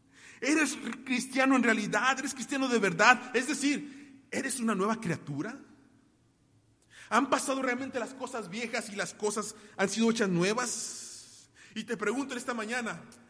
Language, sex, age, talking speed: Spanish, male, 30-49, 145 wpm